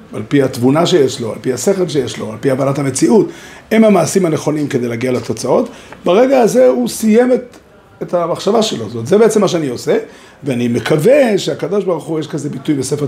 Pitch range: 135-200 Hz